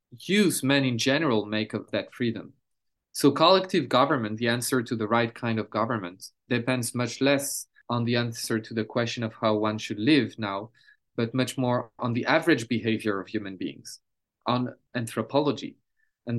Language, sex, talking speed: English, male, 170 wpm